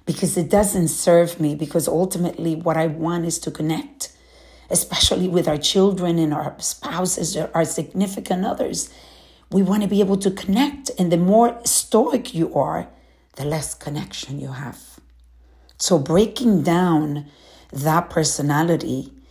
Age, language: 50-69, English